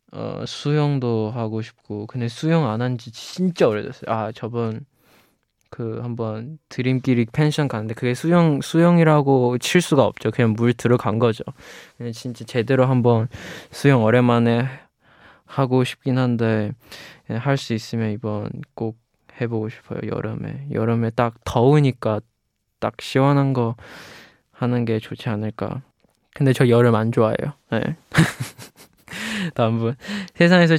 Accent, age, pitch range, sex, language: native, 20-39, 115-140 Hz, male, Korean